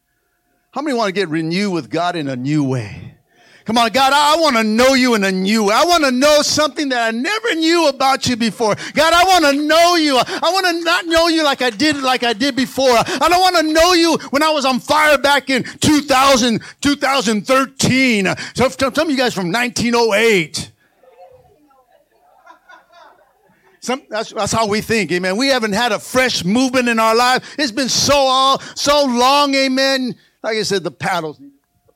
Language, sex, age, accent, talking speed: English, male, 50-69, American, 205 wpm